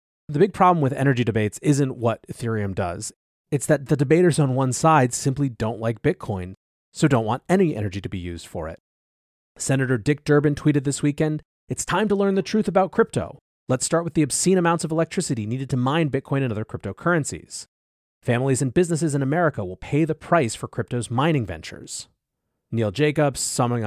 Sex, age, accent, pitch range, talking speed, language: male, 30-49, American, 115-160 Hz, 190 wpm, English